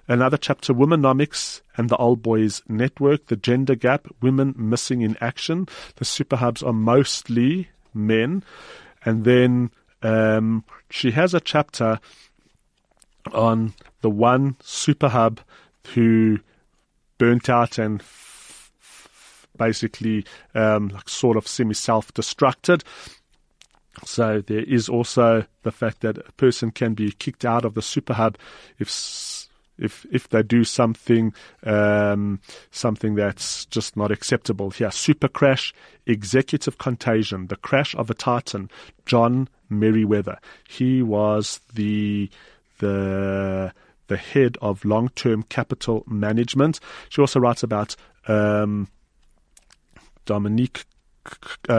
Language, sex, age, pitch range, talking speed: English, male, 30-49, 105-130 Hz, 115 wpm